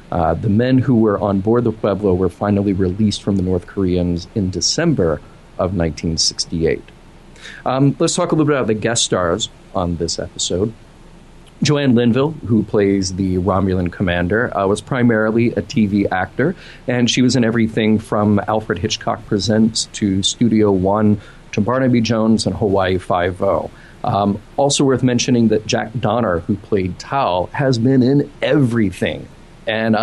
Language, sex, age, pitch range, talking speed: English, male, 40-59, 100-125 Hz, 160 wpm